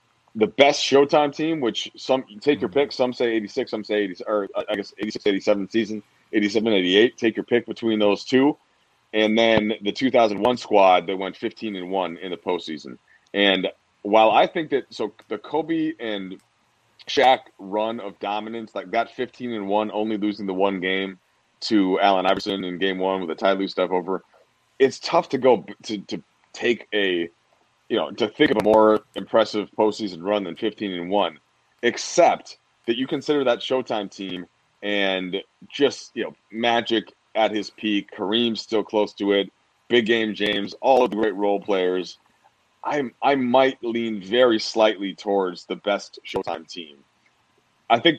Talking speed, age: 175 wpm, 30-49